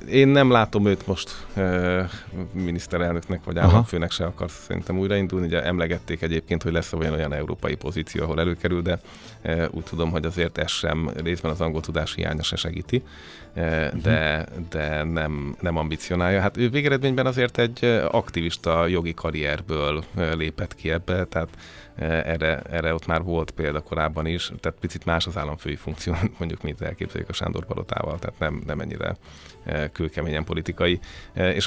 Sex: male